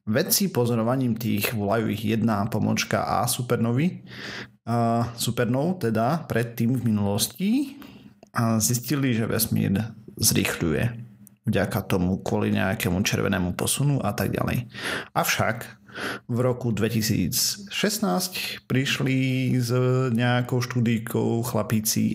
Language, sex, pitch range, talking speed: Slovak, male, 110-130 Hz, 100 wpm